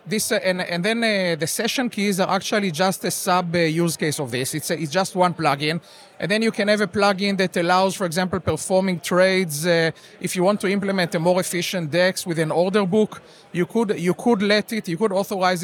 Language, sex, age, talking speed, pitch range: English, male, 30-49, 235 wpm, 170-205 Hz